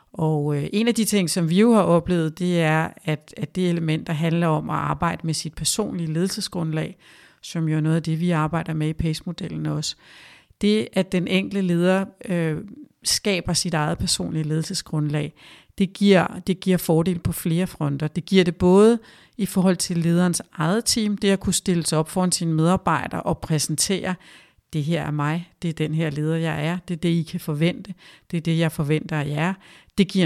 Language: Danish